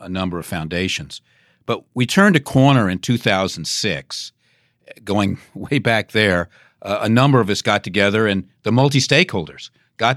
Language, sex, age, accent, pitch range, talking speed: English, male, 50-69, American, 95-120 Hz, 155 wpm